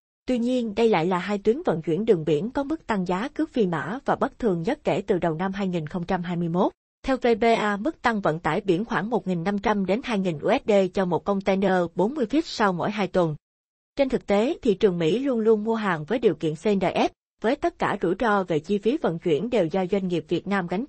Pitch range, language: 180-230 Hz, Vietnamese